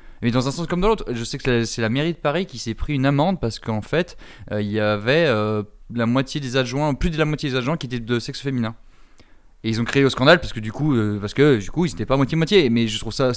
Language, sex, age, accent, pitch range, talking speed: French, male, 20-39, French, 105-135 Hz, 295 wpm